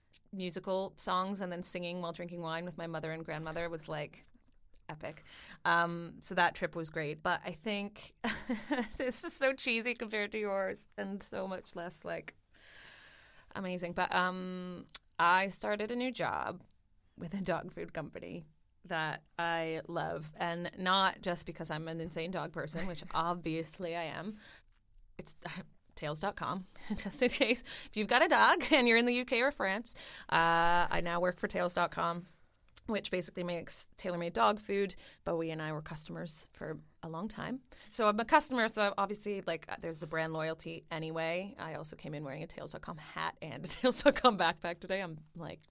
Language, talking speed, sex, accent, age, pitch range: English, 175 wpm, female, American, 20-39, 165-205 Hz